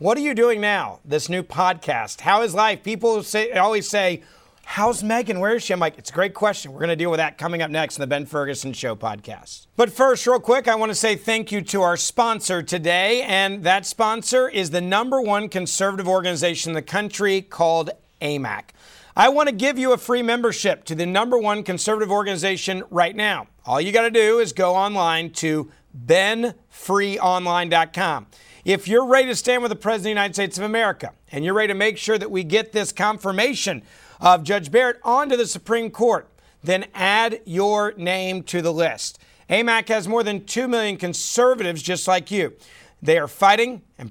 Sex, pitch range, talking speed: male, 170-215 Hz, 200 wpm